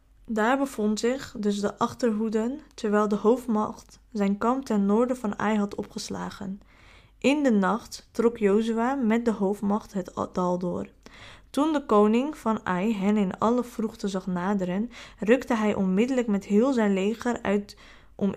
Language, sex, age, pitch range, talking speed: Dutch, female, 20-39, 195-235 Hz, 155 wpm